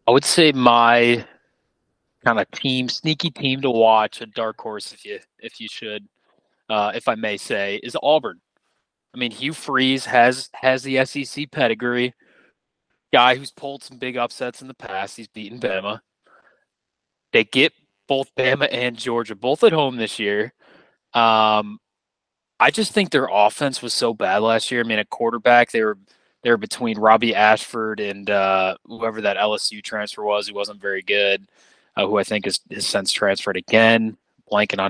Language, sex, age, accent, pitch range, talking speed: English, male, 20-39, American, 105-130 Hz, 175 wpm